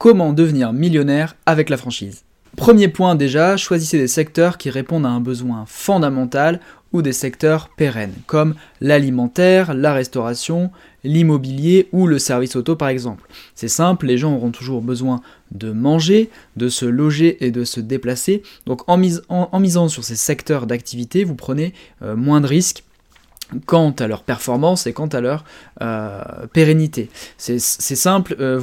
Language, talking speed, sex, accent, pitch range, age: French, 165 wpm, male, French, 120-160 Hz, 20-39